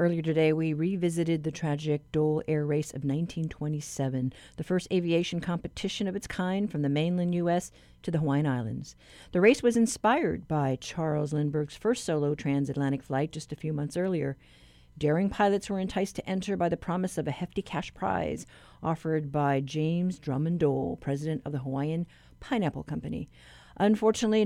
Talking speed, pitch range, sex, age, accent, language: 165 wpm, 145-180 Hz, female, 50-69, American, English